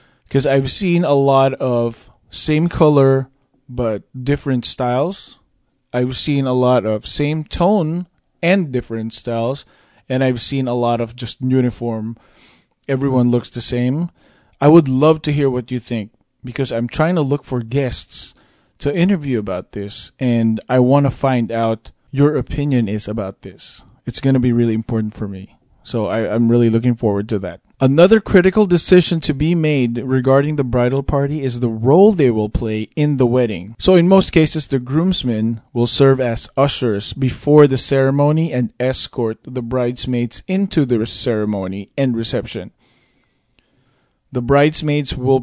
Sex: male